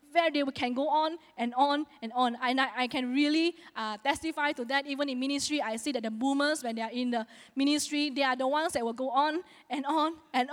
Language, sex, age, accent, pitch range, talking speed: English, female, 20-39, Malaysian, 245-305 Hz, 245 wpm